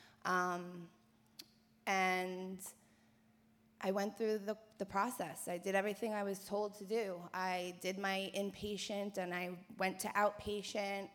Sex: female